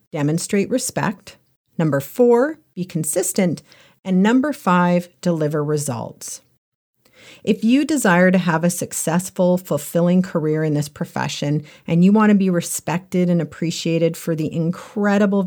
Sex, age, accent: female, 40-59, American